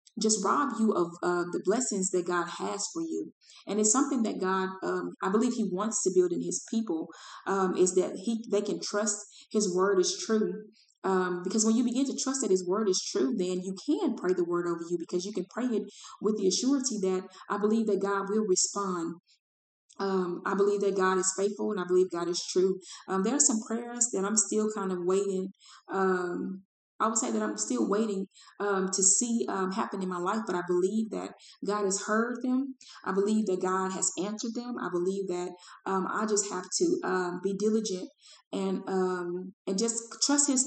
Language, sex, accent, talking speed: English, female, American, 215 wpm